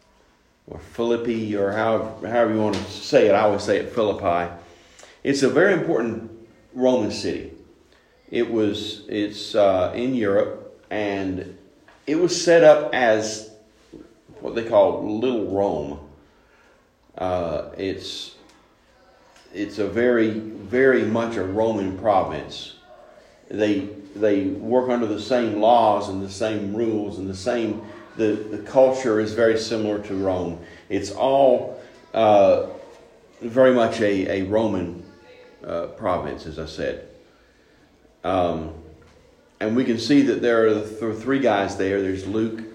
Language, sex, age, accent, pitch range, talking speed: English, male, 40-59, American, 95-115 Hz, 140 wpm